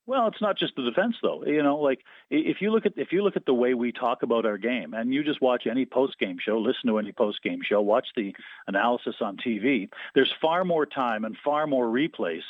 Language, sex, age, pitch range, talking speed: English, male, 50-69, 120-145 Hz, 255 wpm